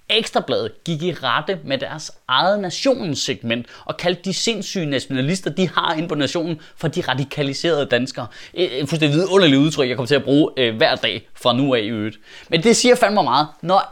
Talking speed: 190 wpm